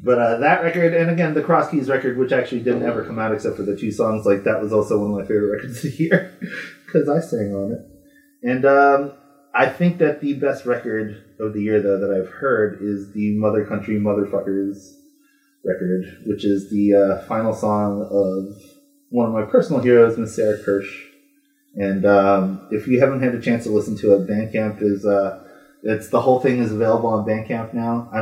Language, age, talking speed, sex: English, 30-49, 210 wpm, male